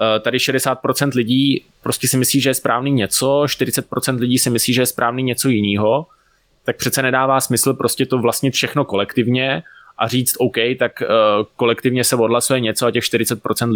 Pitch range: 105-120 Hz